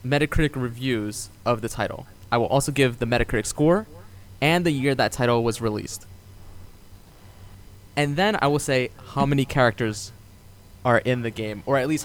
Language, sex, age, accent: English, male, 20-39, American